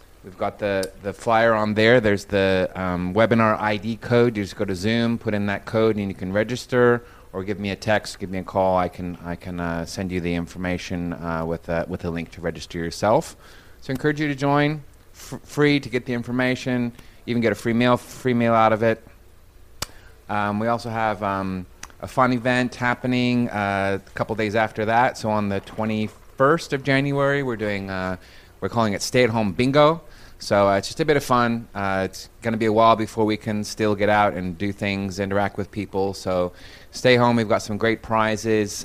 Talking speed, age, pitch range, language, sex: 220 wpm, 30-49, 95-115 Hz, English, male